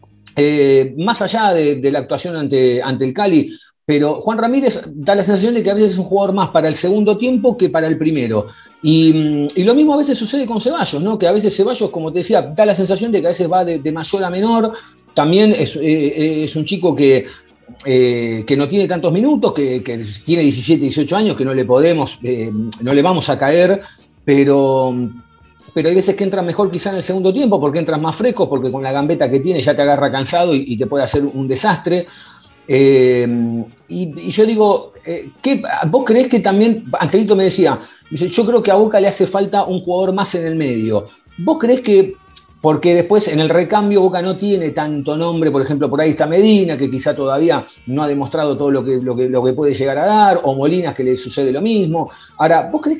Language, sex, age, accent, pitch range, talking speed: Spanish, male, 40-59, Argentinian, 140-200 Hz, 225 wpm